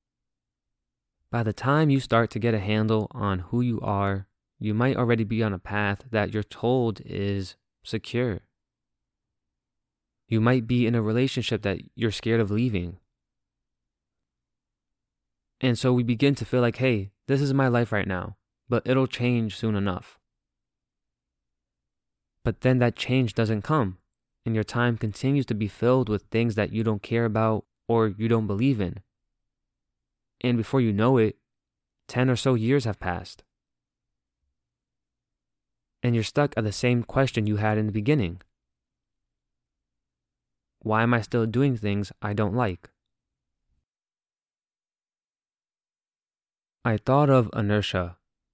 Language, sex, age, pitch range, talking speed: English, male, 20-39, 95-120 Hz, 145 wpm